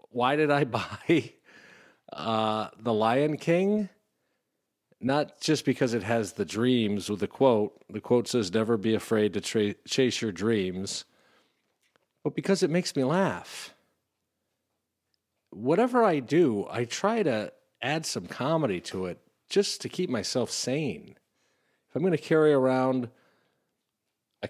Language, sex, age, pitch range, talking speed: English, male, 40-59, 105-150 Hz, 140 wpm